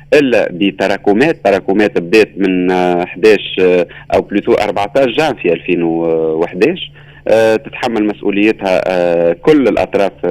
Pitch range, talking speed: 90-135 Hz, 95 wpm